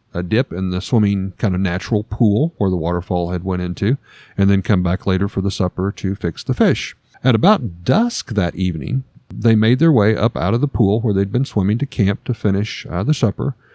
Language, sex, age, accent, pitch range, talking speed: English, male, 50-69, American, 95-125 Hz, 225 wpm